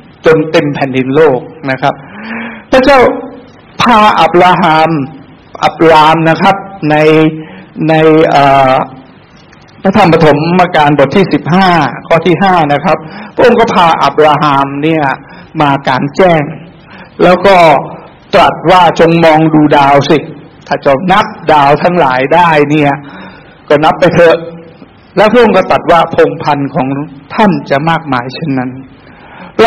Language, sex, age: Thai, male, 60-79